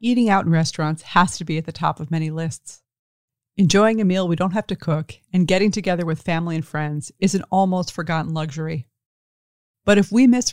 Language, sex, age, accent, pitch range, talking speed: English, female, 30-49, American, 160-195 Hz, 210 wpm